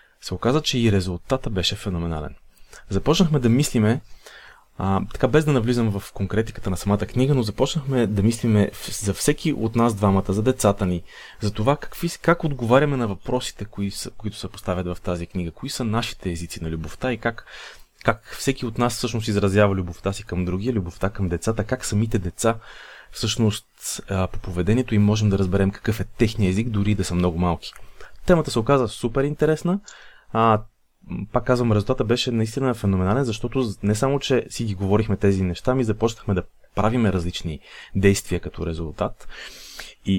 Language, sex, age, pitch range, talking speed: Bulgarian, male, 30-49, 100-135 Hz, 175 wpm